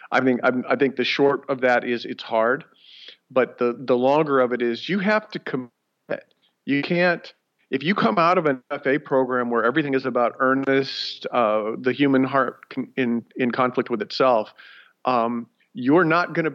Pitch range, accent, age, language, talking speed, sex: 125-155 Hz, American, 40-59, English, 190 wpm, male